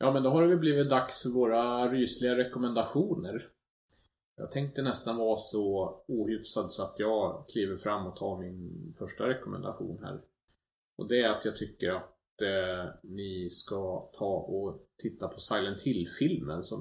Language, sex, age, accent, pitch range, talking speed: English, male, 30-49, Norwegian, 95-120 Hz, 155 wpm